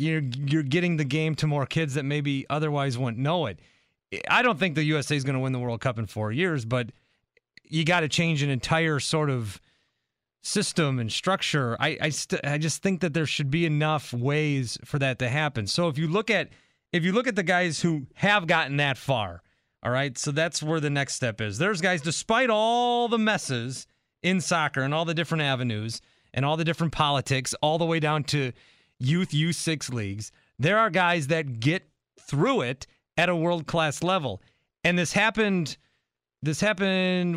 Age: 30-49